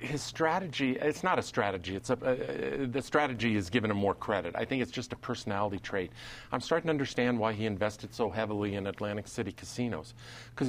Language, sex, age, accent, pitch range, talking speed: English, male, 50-69, American, 110-125 Hz, 210 wpm